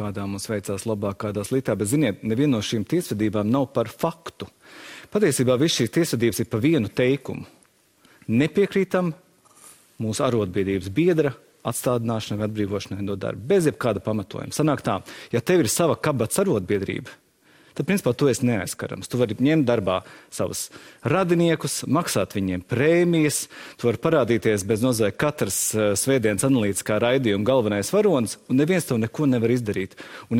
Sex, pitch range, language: male, 110-145 Hz, English